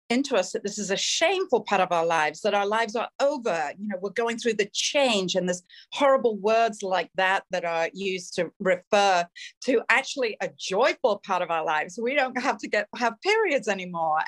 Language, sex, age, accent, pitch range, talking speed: English, female, 50-69, British, 180-235 Hz, 210 wpm